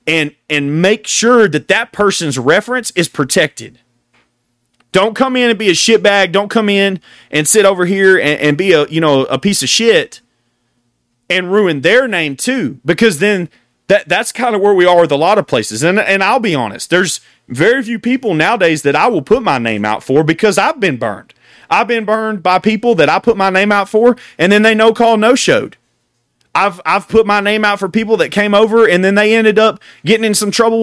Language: English